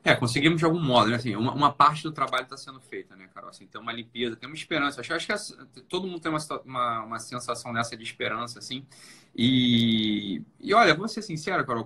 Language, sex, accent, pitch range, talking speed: Portuguese, male, Brazilian, 120-160 Hz, 235 wpm